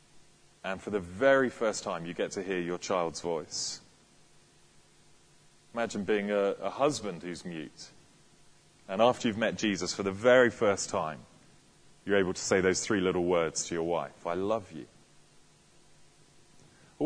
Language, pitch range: English, 95-120 Hz